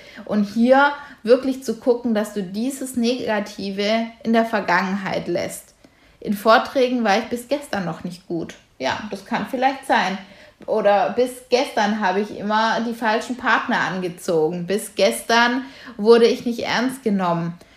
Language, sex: German, female